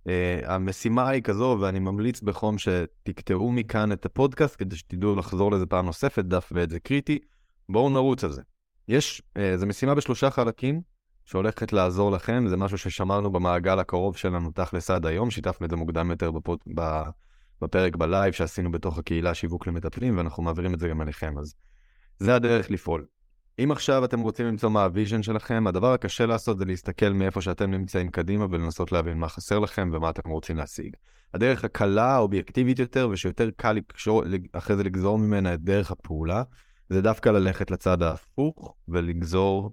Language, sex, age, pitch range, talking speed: Hebrew, male, 20-39, 85-110 Hz, 170 wpm